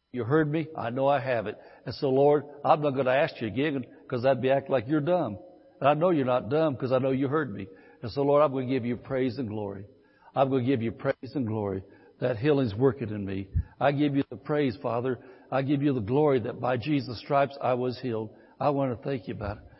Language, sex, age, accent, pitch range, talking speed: English, male, 60-79, American, 130-175 Hz, 260 wpm